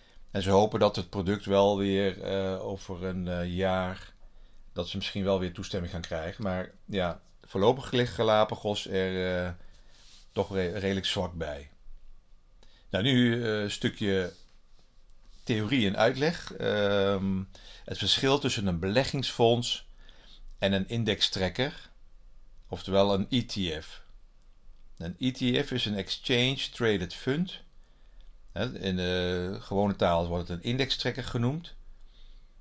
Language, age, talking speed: Dutch, 50-69, 125 wpm